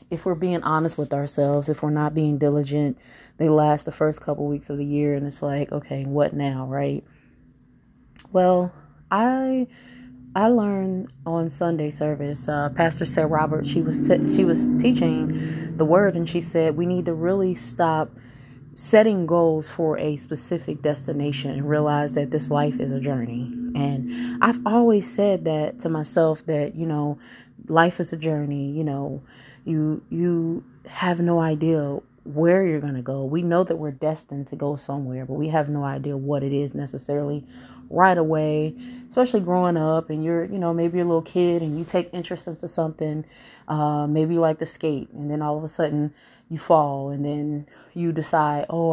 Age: 20-39